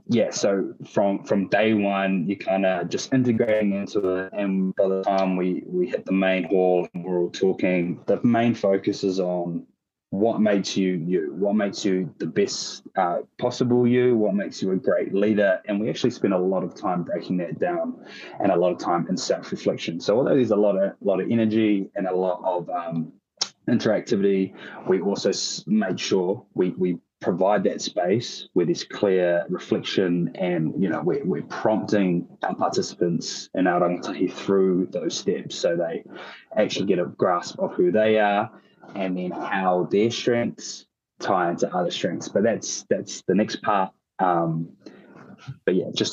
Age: 20-39